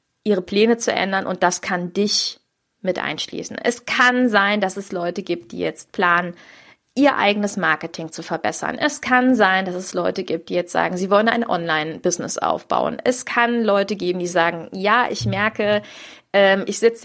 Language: German